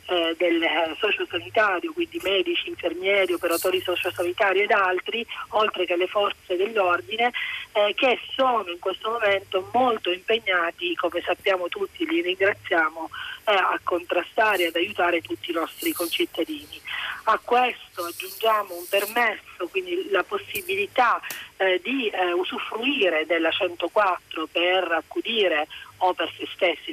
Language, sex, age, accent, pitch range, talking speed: Italian, female, 40-59, native, 175-270 Hz, 130 wpm